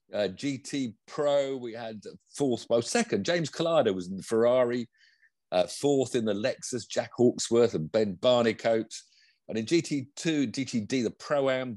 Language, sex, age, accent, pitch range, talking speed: English, male, 50-69, British, 110-155 Hz, 165 wpm